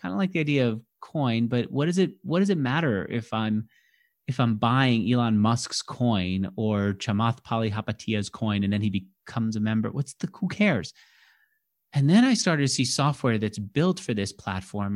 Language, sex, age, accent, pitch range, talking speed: English, male, 30-49, American, 110-150 Hz, 195 wpm